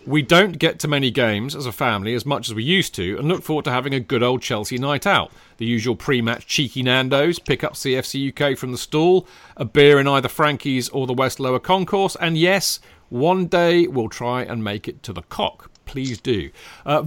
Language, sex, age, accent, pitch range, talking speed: English, male, 40-59, British, 120-165 Hz, 220 wpm